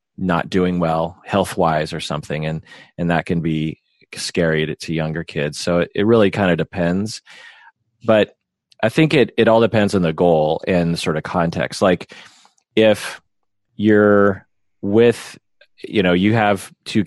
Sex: male